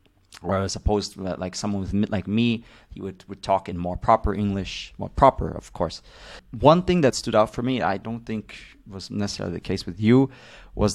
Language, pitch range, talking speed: English, 95-110 Hz, 215 wpm